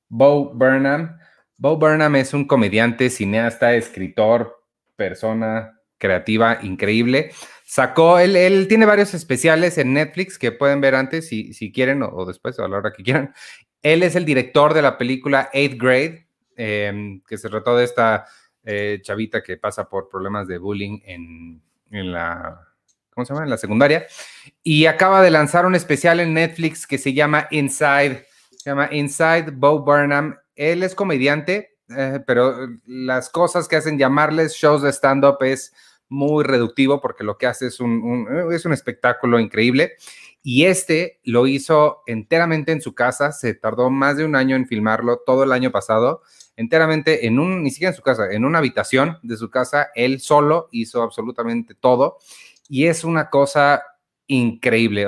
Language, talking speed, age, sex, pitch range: Spanish, 170 wpm, 30-49, male, 115-155 Hz